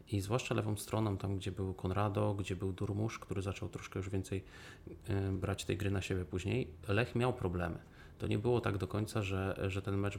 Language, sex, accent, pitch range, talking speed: Polish, male, native, 90-105 Hz, 205 wpm